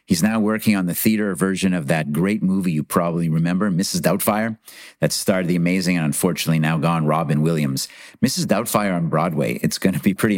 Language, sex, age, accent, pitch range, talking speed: English, male, 50-69, American, 90-120 Hz, 195 wpm